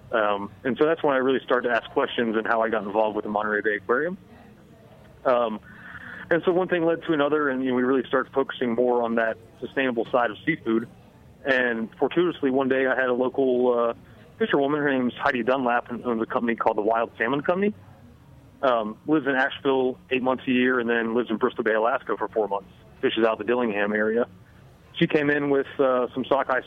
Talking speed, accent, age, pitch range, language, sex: 210 wpm, American, 30-49, 115-135 Hz, English, male